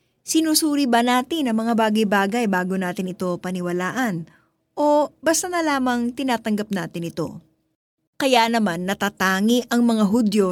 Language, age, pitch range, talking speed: Filipino, 20-39, 185-255 Hz, 130 wpm